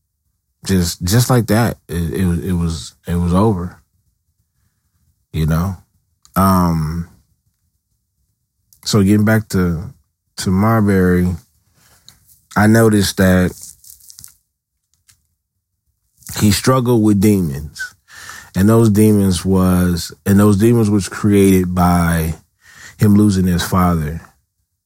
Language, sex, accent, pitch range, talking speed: English, male, American, 90-105 Hz, 100 wpm